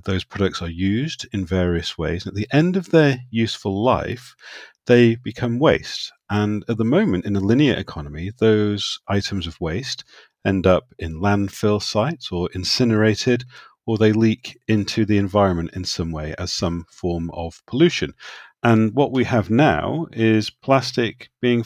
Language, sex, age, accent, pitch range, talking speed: English, male, 40-59, British, 100-125 Hz, 160 wpm